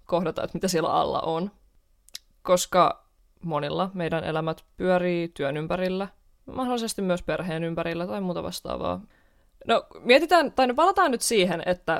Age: 20-39